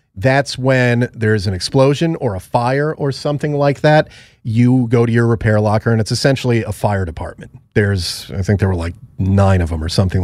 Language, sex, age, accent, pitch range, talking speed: English, male, 30-49, American, 95-125 Hz, 205 wpm